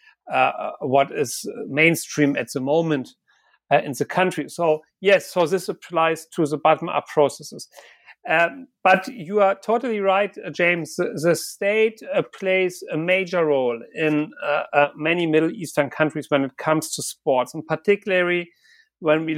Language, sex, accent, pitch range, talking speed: English, male, German, 150-175 Hz, 160 wpm